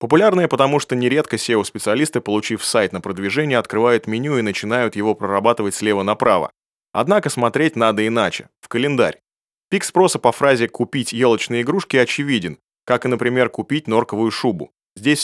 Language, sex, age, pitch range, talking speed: Russian, male, 30-49, 110-140 Hz, 150 wpm